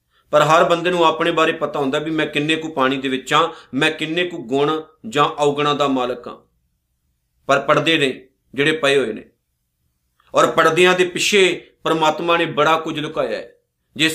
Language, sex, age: Punjabi, male, 40-59